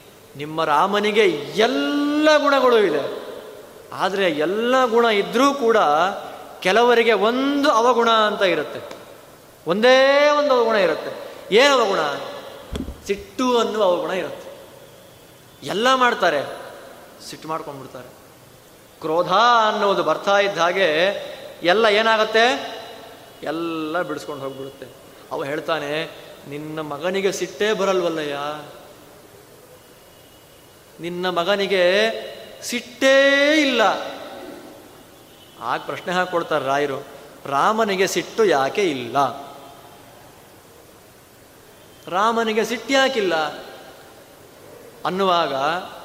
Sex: male